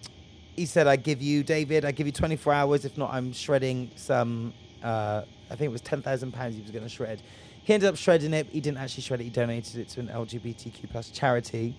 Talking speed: 235 wpm